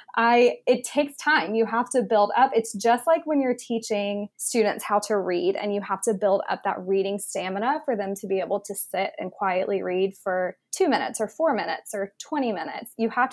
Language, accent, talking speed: English, American, 220 wpm